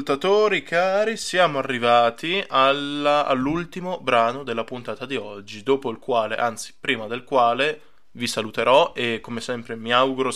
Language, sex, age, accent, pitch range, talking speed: English, male, 20-39, Italian, 115-135 Hz, 140 wpm